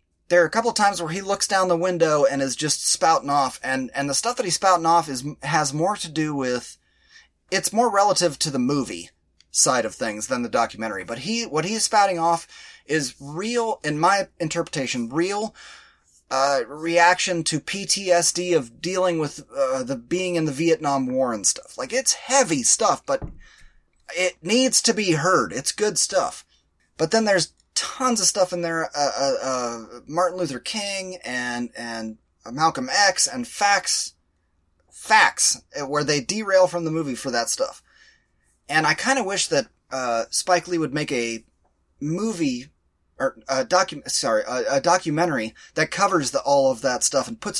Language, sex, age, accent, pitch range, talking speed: English, male, 30-49, American, 135-205 Hz, 180 wpm